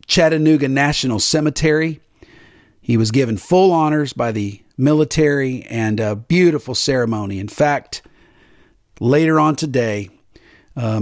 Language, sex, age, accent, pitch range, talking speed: English, male, 40-59, American, 110-155 Hz, 115 wpm